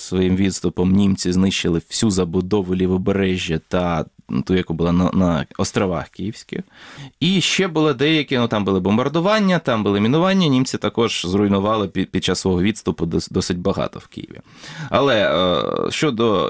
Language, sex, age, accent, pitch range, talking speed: Ukrainian, male, 20-39, native, 95-120 Hz, 140 wpm